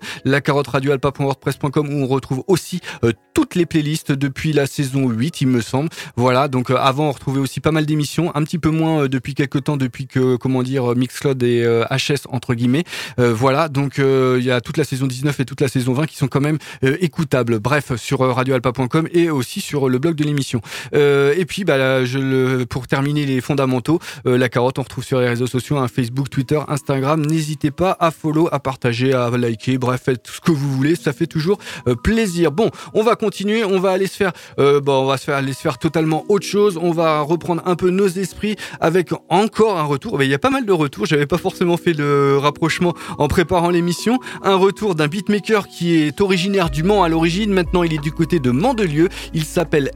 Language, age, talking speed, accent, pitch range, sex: French, 20-39, 230 wpm, French, 135-175 Hz, male